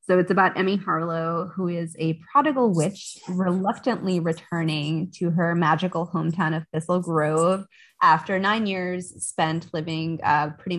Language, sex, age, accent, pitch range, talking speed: English, female, 20-39, American, 165-190 Hz, 145 wpm